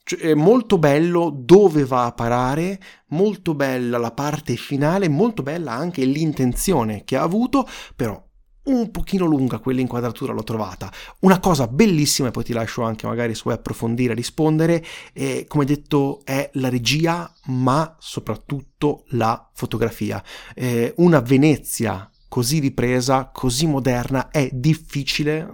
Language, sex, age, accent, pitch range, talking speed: Italian, male, 30-49, native, 120-160 Hz, 140 wpm